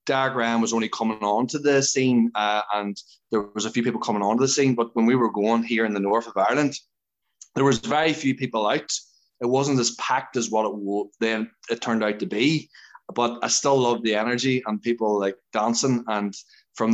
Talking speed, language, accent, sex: 225 wpm, English, Irish, male